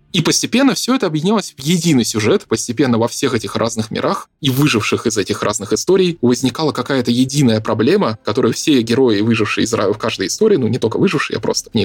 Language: Russian